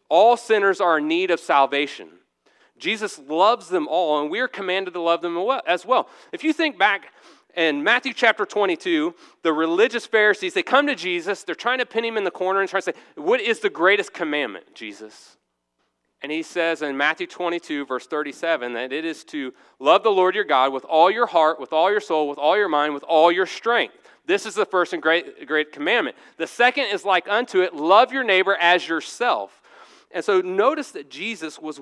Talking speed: 210 wpm